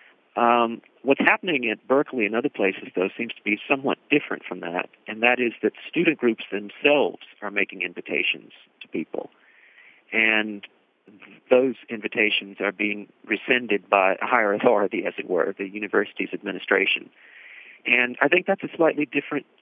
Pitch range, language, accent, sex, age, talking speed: 105-130 Hz, English, American, male, 50-69, 155 wpm